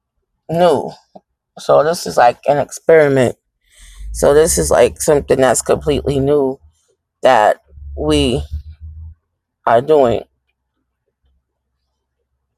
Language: English